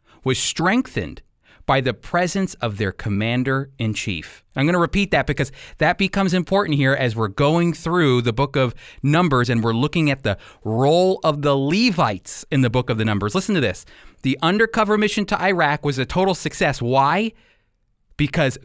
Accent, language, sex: American, English, male